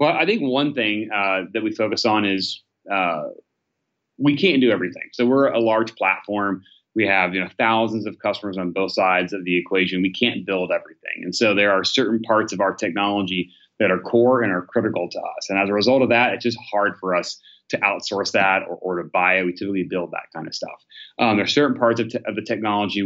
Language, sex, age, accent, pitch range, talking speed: English, male, 30-49, American, 95-115 Hz, 230 wpm